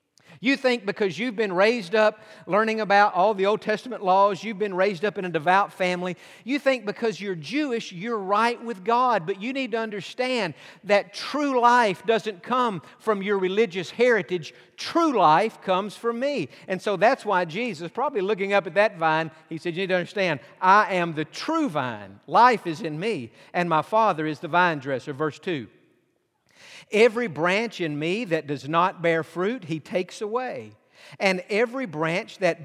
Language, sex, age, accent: English, male, 50-69, American